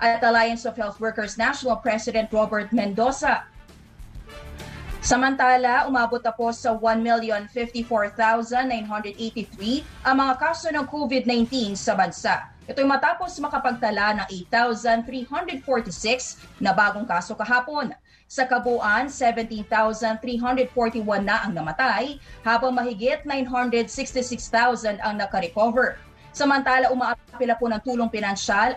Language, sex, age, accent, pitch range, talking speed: English, female, 20-39, Filipino, 220-255 Hz, 100 wpm